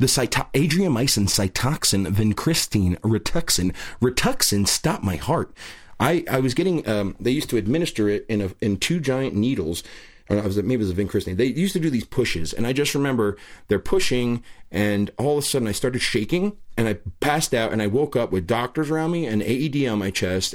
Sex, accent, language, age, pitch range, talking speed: male, American, English, 30-49, 105-135 Hz, 205 wpm